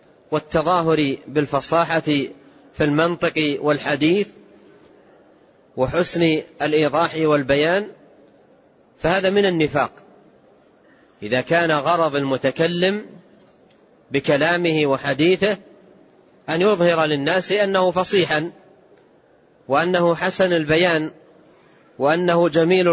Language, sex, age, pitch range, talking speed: Arabic, male, 40-59, 150-185 Hz, 70 wpm